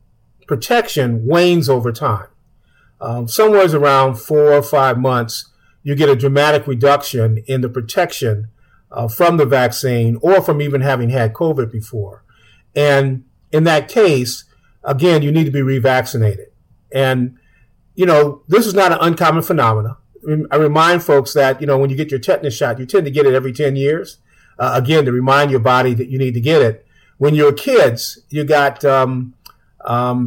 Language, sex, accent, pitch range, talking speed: English, male, American, 120-150 Hz, 175 wpm